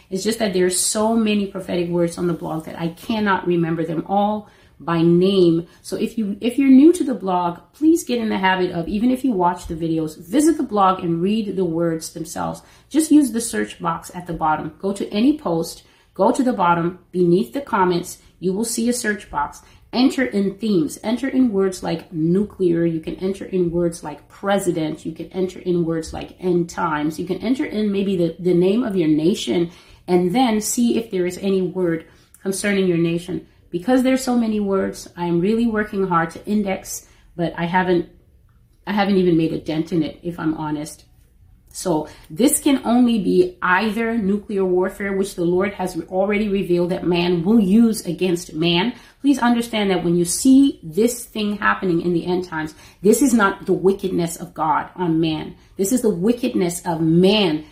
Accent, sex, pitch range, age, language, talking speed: American, female, 170-215 Hz, 30-49, English, 200 wpm